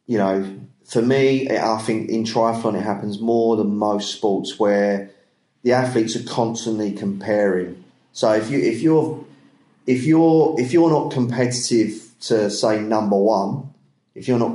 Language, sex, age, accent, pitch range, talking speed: English, male, 30-49, British, 105-125 Hz, 155 wpm